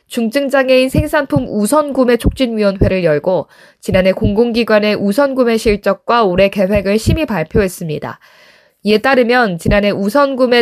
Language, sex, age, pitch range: Korean, female, 20-39, 195-260 Hz